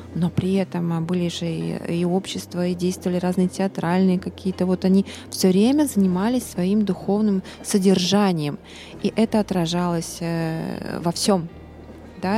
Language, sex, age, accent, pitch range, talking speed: Russian, female, 20-39, native, 170-200 Hz, 125 wpm